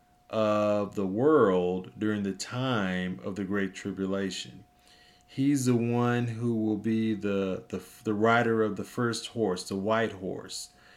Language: English